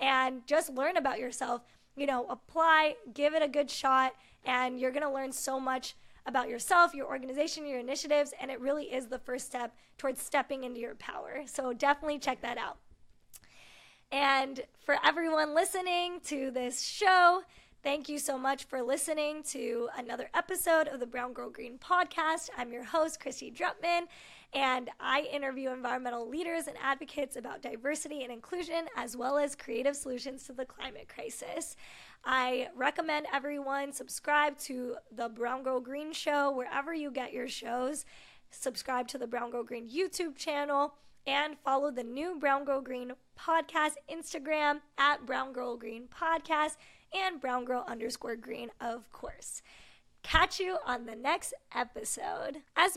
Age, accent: 10-29, American